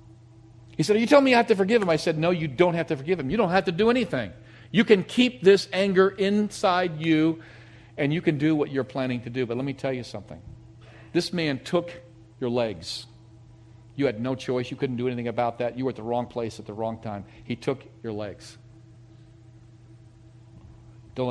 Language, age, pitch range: English, 50-69, 115-140 Hz